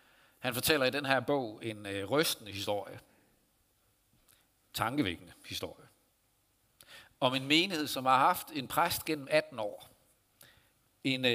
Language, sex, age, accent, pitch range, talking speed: Danish, male, 60-79, native, 105-130 Hz, 125 wpm